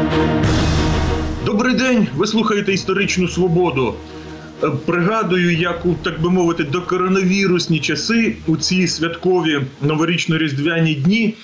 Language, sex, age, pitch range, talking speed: Ukrainian, male, 30-49, 155-195 Hz, 95 wpm